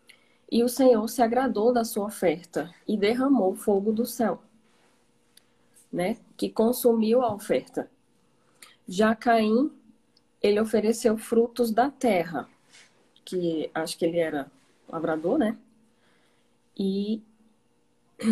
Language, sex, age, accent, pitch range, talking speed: Portuguese, female, 20-39, Brazilian, 170-230 Hz, 110 wpm